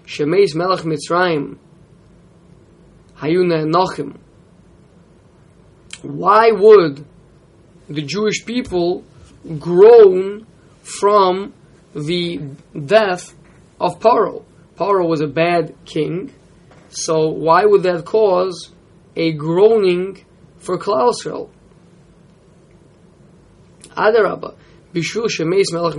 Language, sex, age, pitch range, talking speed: English, male, 20-39, 160-195 Hz, 70 wpm